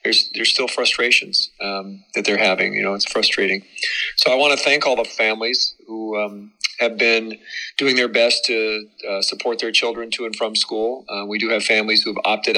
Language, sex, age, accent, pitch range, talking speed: English, male, 40-59, American, 100-115 Hz, 210 wpm